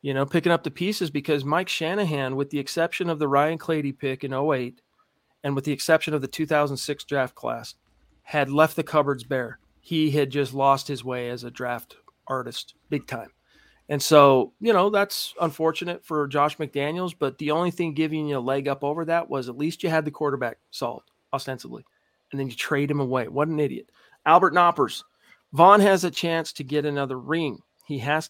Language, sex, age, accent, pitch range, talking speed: English, male, 40-59, American, 135-155 Hz, 200 wpm